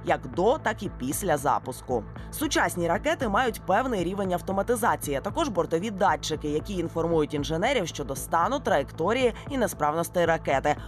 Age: 20-39